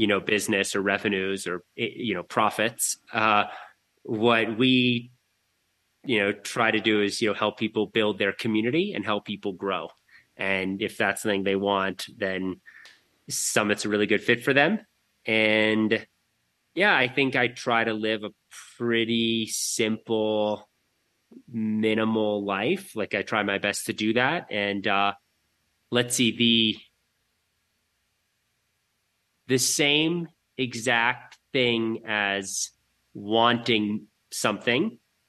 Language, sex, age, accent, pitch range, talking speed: English, male, 30-49, American, 100-115 Hz, 130 wpm